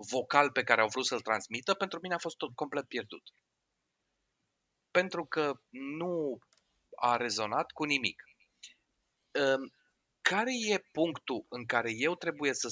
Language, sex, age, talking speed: Romanian, male, 30-49, 135 wpm